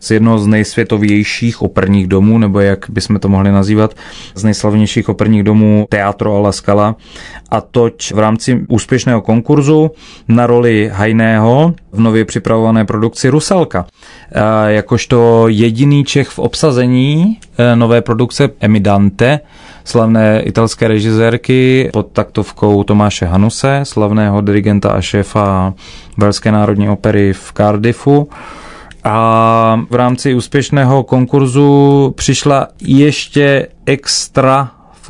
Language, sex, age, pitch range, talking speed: Czech, male, 30-49, 105-125 Hz, 115 wpm